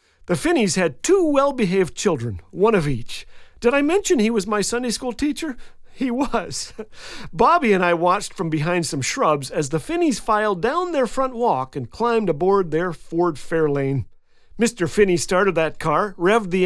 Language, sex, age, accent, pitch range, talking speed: English, male, 40-59, American, 180-250 Hz, 175 wpm